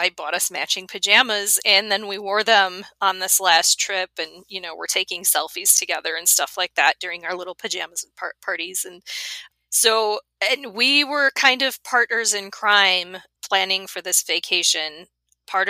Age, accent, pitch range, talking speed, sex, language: 30-49, American, 175-225 Hz, 175 wpm, female, English